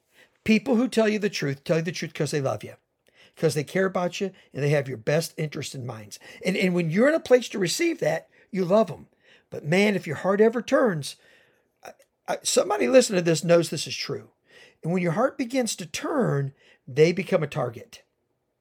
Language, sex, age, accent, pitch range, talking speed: English, male, 50-69, American, 165-235 Hz, 220 wpm